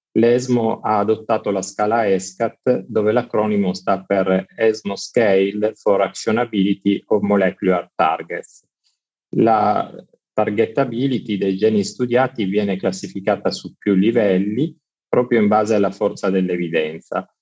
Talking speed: 115 wpm